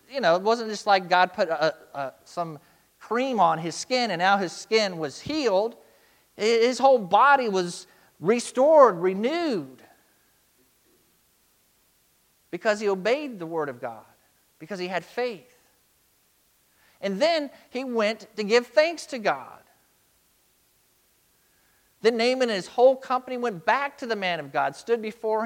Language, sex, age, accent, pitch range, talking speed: English, male, 50-69, American, 175-230 Hz, 140 wpm